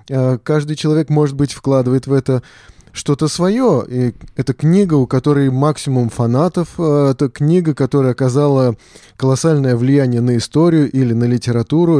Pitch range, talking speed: 125-155 Hz, 130 wpm